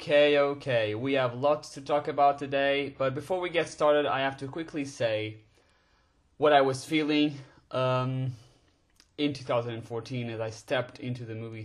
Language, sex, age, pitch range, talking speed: English, male, 30-49, 110-145 Hz, 165 wpm